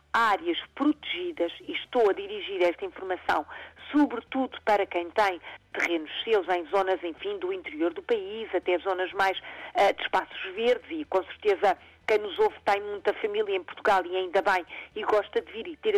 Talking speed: 185 wpm